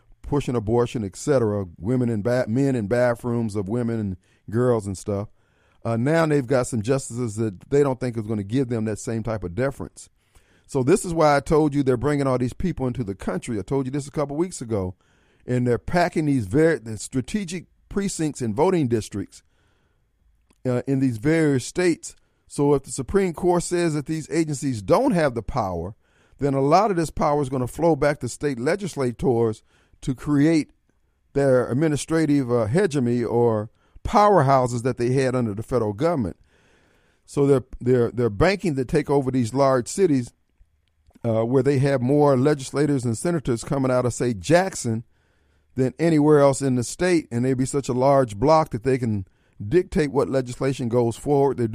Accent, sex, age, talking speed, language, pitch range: American, male, 40-59, 180 wpm, English, 110-145 Hz